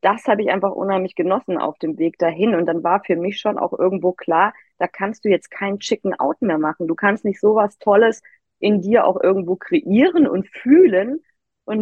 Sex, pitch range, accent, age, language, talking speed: female, 170-210 Hz, German, 30-49, German, 210 wpm